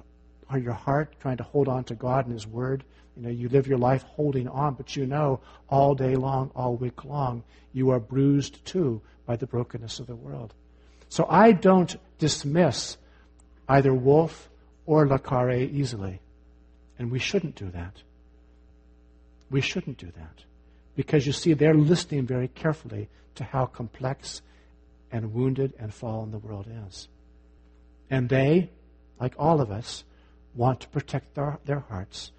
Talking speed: 160 wpm